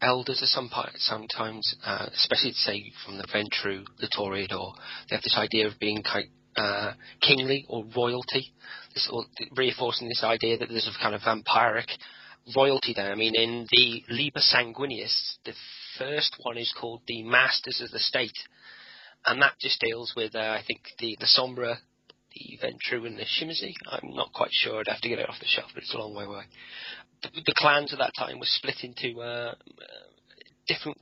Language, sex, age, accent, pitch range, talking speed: English, male, 30-49, British, 115-135 Hz, 190 wpm